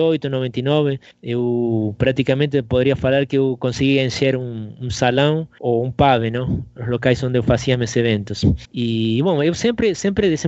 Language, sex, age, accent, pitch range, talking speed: Portuguese, male, 20-39, Argentinian, 120-150 Hz, 165 wpm